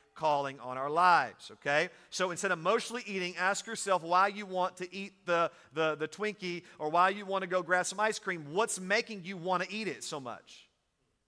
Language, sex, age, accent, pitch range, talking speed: English, male, 40-59, American, 170-215 Hz, 215 wpm